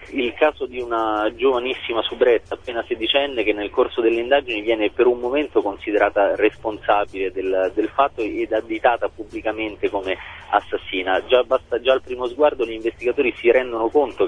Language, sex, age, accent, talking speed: Italian, male, 30-49, native, 160 wpm